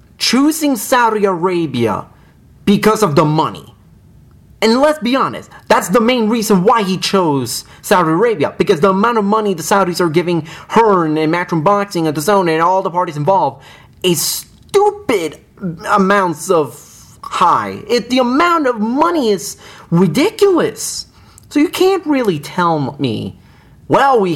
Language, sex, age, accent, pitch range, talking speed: English, male, 30-49, American, 130-200 Hz, 150 wpm